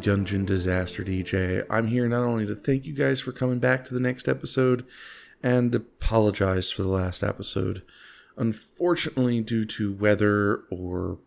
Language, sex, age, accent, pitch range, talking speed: English, male, 30-49, American, 95-115 Hz, 155 wpm